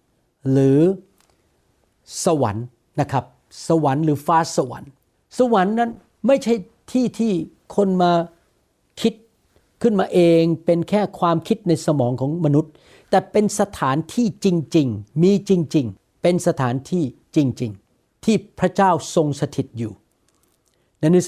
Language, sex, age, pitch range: Thai, male, 60-79, 135-190 Hz